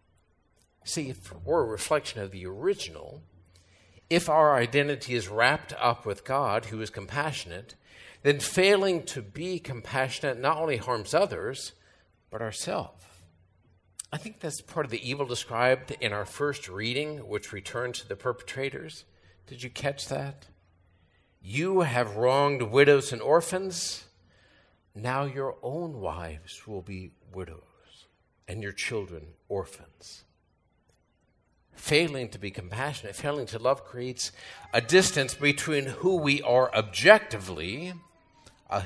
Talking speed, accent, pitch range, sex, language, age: 130 wpm, American, 95-145 Hz, male, English, 50-69